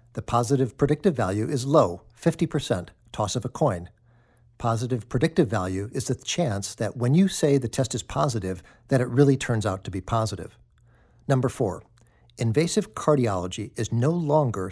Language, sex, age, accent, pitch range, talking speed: English, male, 60-79, American, 110-140 Hz, 165 wpm